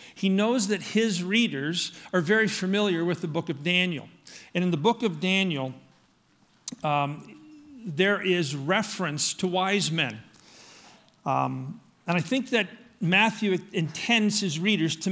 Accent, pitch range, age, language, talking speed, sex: American, 165-210 Hz, 50-69, English, 145 wpm, male